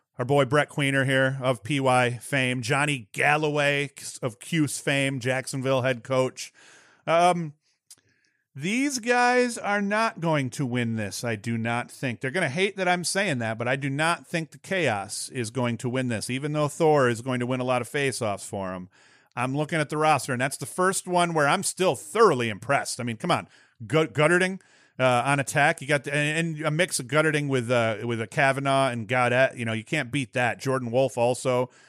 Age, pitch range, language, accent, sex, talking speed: 40-59, 125-155 Hz, English, American, male, 210 wpm